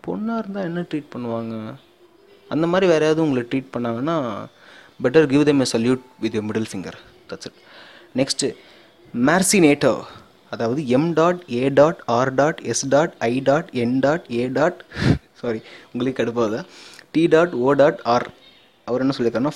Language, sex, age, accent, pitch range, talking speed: Tamil, male, 20-39, native, 120-160 Hz, 100 wpm